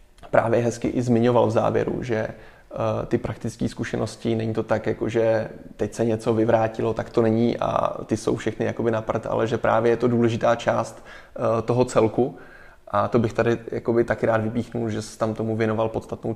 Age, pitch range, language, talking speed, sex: 20-39, 110-115 Hz, Czech, 190 wpm, male